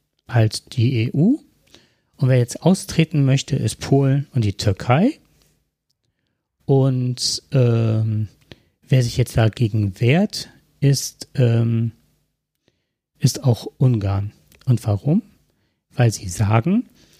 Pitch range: 110-135 Hz